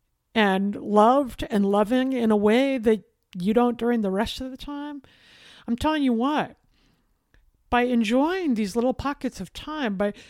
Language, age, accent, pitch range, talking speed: English, 50-69, American, 205-270 Hz, 165 wpm